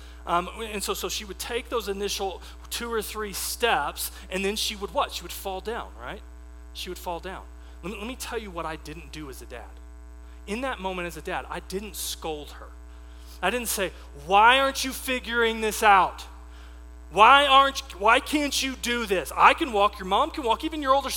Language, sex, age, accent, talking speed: English, male, 30-49, American, 215 wpm